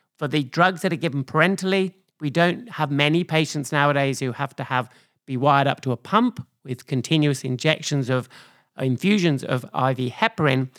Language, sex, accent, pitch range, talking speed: English, male, British, 130-155 Hz, 180 wpm